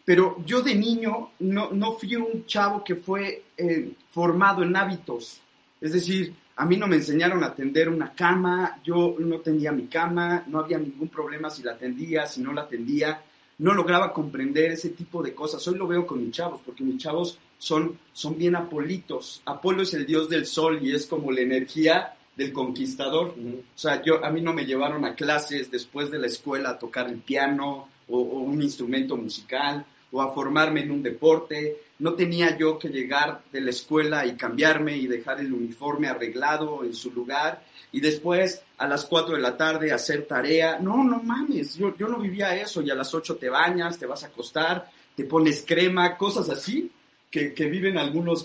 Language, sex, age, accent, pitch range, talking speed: Spanish, male, 40-59, Mexican, 145-180 Hz, 195 wpm